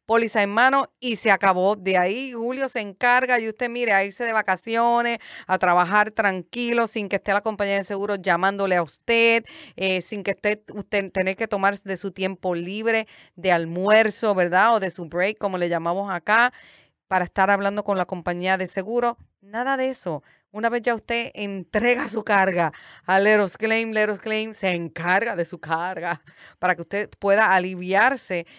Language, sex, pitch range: Spanish, female, 185-230 Hz